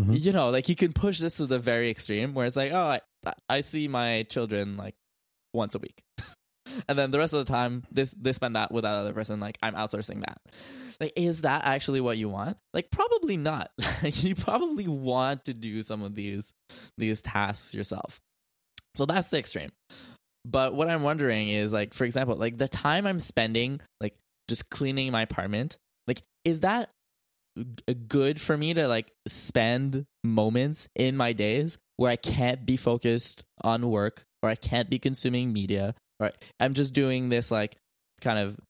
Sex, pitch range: male, 110-140 Hz